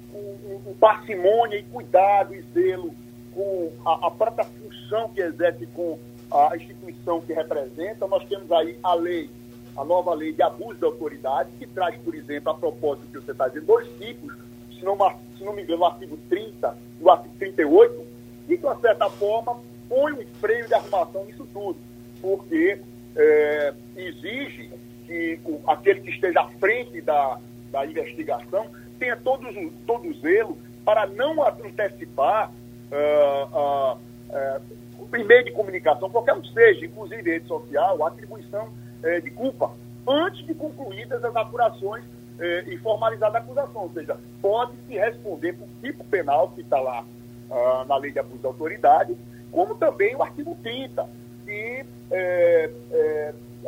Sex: male